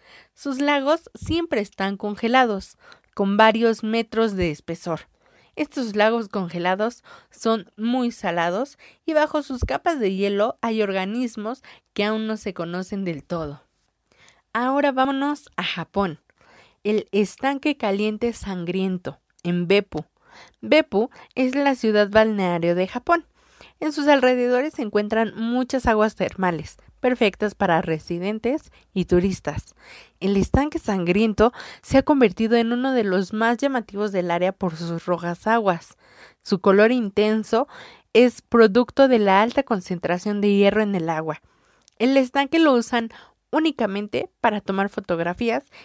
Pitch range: 185-245 Hz